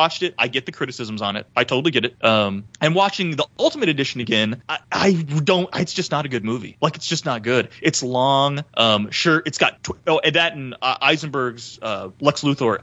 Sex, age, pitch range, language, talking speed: male, 30-49, 125-180 Hz, English, 225 wpm